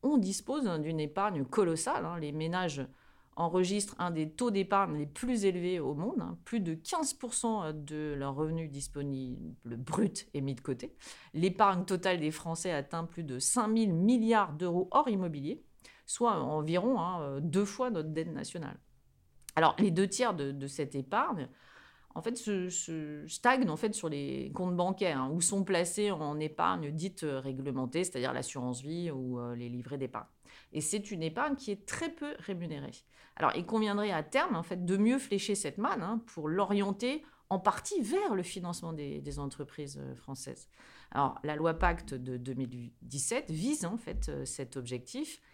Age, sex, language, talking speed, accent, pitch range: 30-49, female, French, 160 wpm, French, 145-205 Hz